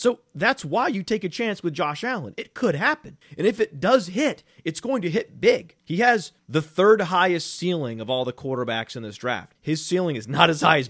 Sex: male